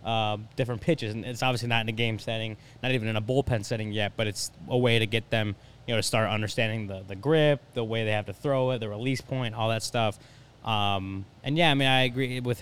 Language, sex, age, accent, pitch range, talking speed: English, male, 20-39, American, 110-125 Hz, 255 wpm